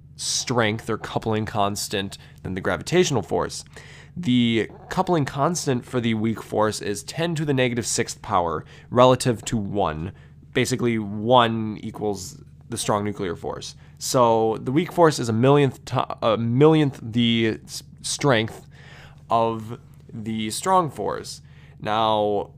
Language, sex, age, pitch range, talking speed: English, male, 20-39, 100-130 Hz, 125 wpm